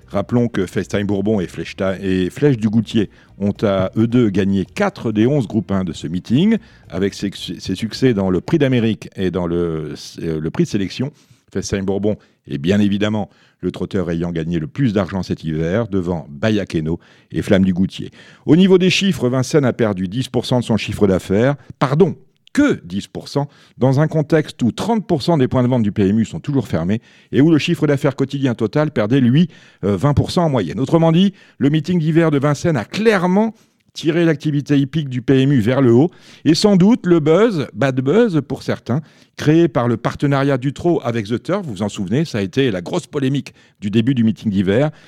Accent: French